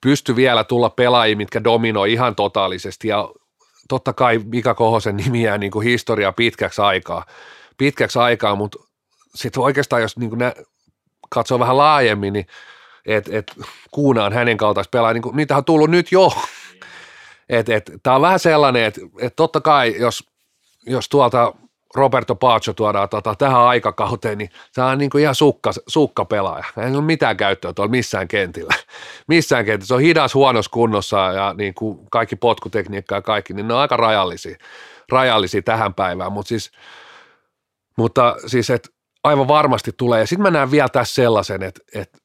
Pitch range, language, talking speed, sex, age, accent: 110-135 Hz, Finnish, 160 wpm, male, 40-59, native